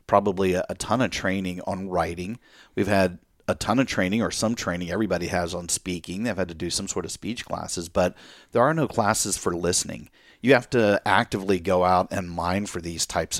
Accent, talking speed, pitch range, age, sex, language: American, 210 wpm, 90-105 Hz, 40-59, male, English